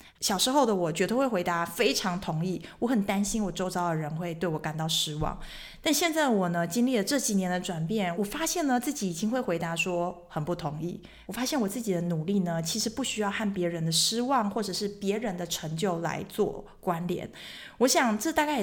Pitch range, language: 170-230 Hz, Chinese